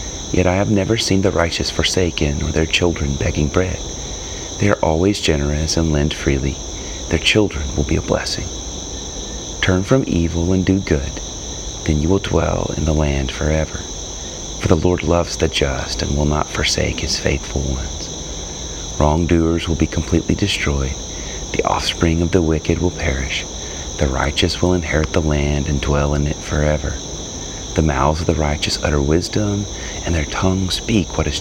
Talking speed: 170 wpm